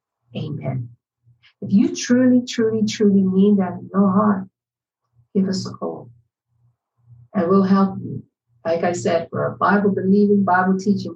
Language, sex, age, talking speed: English, female, 50-69, 140 wpm